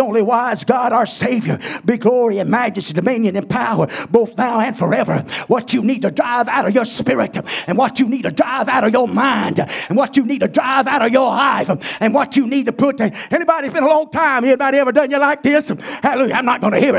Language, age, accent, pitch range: English, 50-69, American, 240-305 Hz